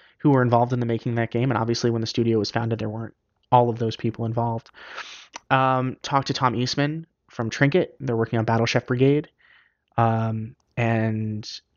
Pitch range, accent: 115-135 Hz, American